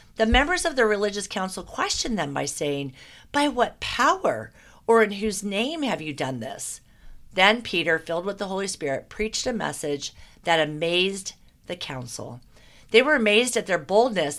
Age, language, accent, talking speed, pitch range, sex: 50-69, English, American, 170 wpm, 160-225 Hz, female